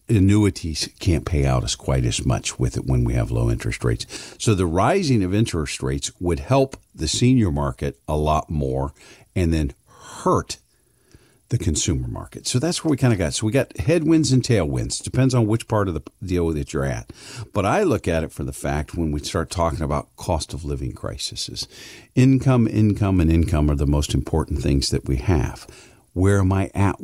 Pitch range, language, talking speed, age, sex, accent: 75-120 Hz, English, 205 wpm, 50-69, male, American